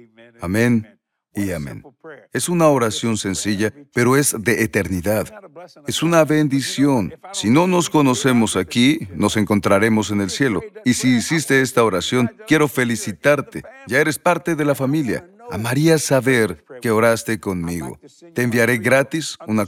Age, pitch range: 40-59, 105-140 Hz